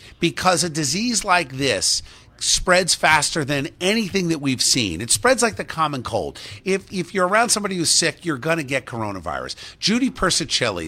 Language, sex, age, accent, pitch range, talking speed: English, male, 50-69, American, 125-180 Hz, 175 wpm